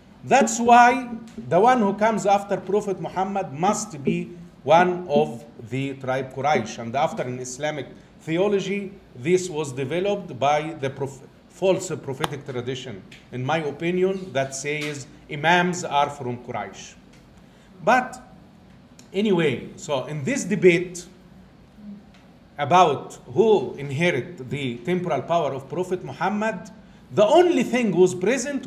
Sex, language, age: male, English, 50-69